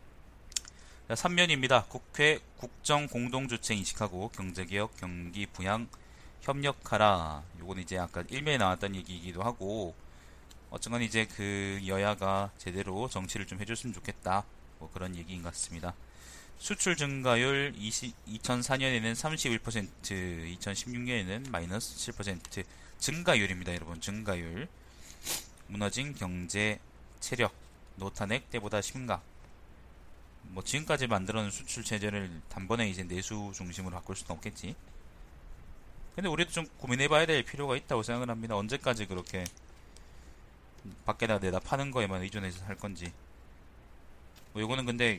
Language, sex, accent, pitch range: Korean, male, native, 90-120 Hz